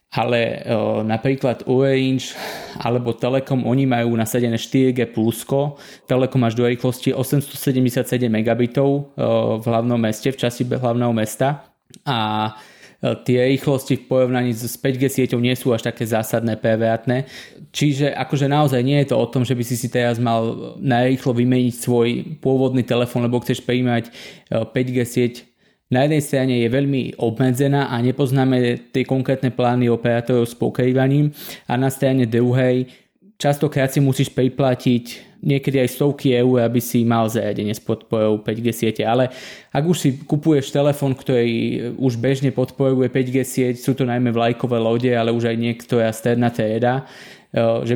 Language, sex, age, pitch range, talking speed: Slovak, male, 20-39, 115-130 Hz, 150 wpm